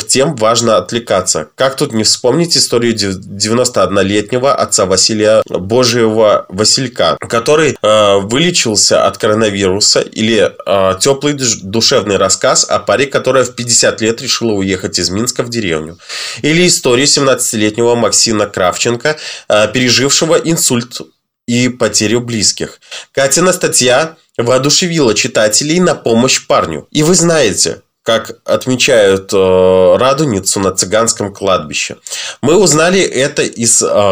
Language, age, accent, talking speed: Russian, 20-39, native, 120 wpm